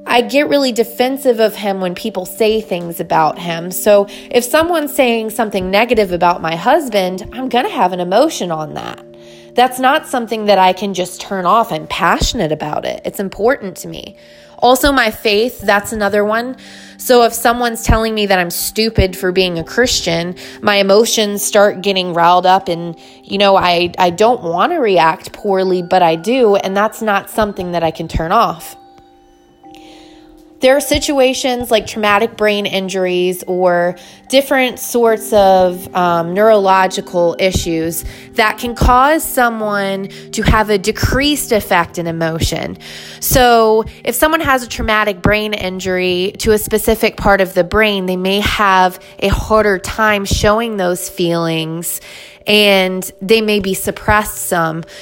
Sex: female